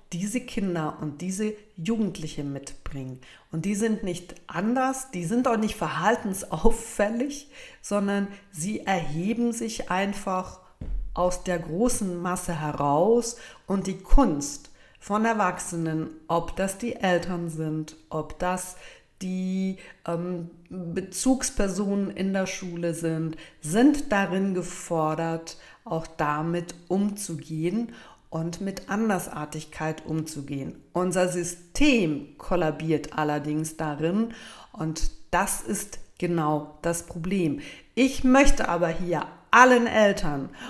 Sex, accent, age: female, German, 50-69